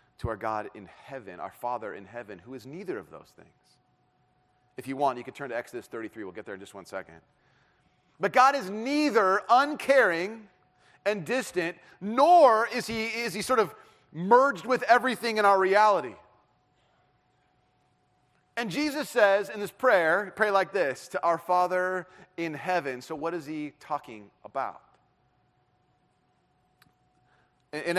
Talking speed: 150 wpm